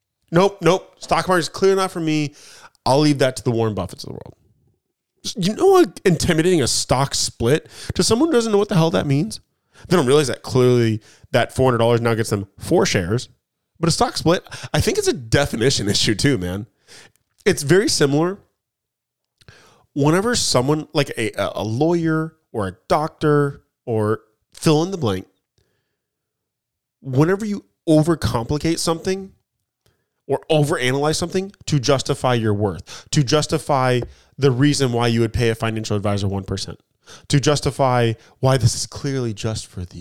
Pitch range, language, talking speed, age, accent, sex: 110-155 Hz, English, 165 wpm, 30-49, American, male